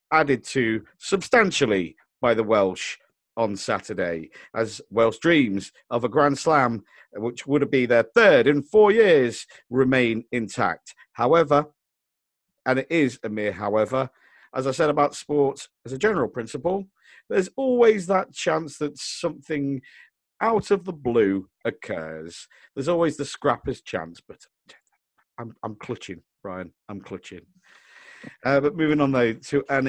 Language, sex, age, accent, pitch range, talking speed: English, male, 50-69, British, 115-150 Hz, 145 wpm